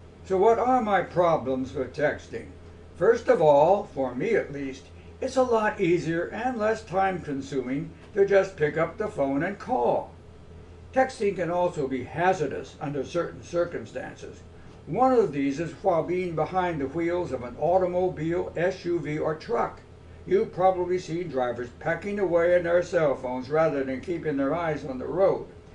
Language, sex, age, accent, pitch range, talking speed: English, male, 60-79, American, 135-190 Hz, 165 wpm